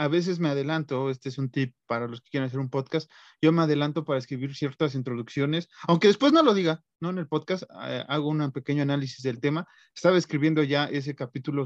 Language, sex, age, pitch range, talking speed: Spanish, male, 30-49, 135-160 Hz, 220 wpm